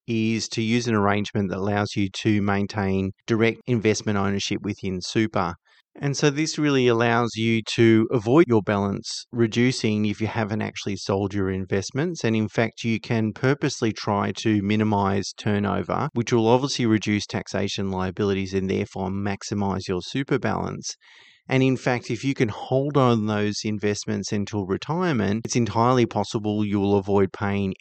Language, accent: English, Australian